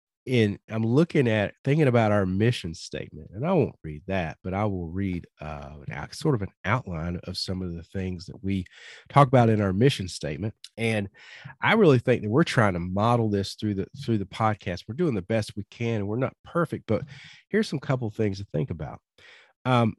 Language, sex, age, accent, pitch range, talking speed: English, male, 40-59, American, 100-130 Hz, 215 wpm